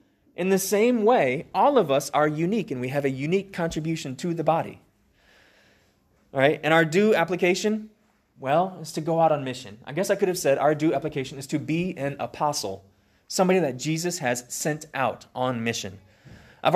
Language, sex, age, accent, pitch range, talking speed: English, male, 20-39, American, 115-170 Hz, 185 wpm